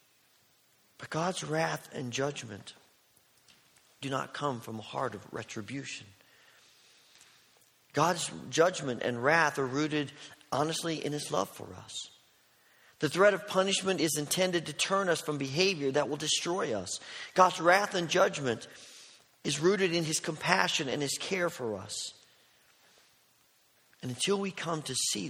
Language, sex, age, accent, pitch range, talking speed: English, male, 50-69, American, 140-180 Hz, 140 wpm